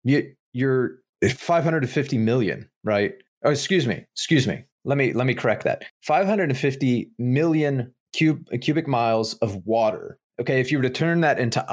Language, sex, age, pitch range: English, male, 30-49, 105-135 Hz